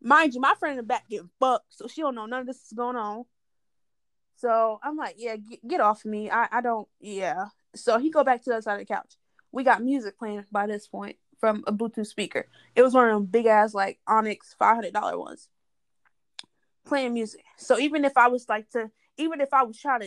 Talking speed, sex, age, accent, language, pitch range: 230 wpm, female, 20-39, American, English, 215-260 Hz